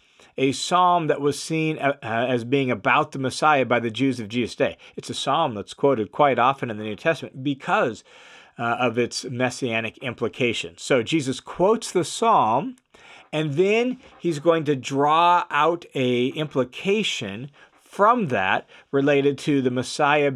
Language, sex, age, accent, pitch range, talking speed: English, male, 40-59, American, 125-170 Hz, 155 wpm